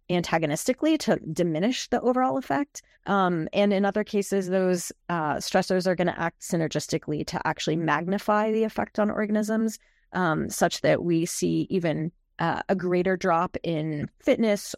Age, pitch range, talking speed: 30-49, 170-205 Hz, 155 wpm